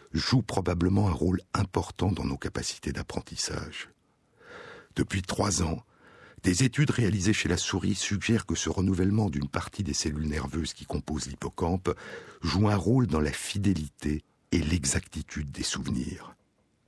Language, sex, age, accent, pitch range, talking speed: French, male, 60-79, French, 80-110 Hz, 140 wpm